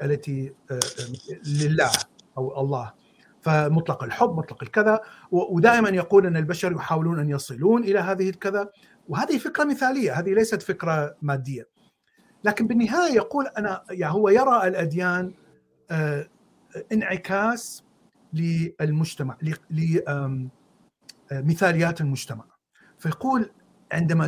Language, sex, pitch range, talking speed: Arabic, male, 150-205 Hz, 100 wpm